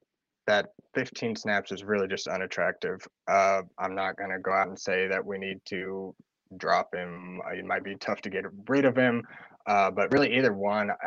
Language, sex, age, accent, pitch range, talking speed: English, male, 20-39, American, 95-125 Hz, 195 wpm